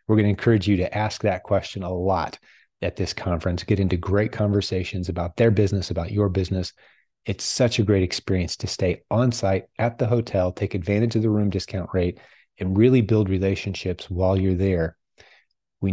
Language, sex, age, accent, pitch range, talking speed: English, male, 30-49, American, 95-110 Hz, 190 wpm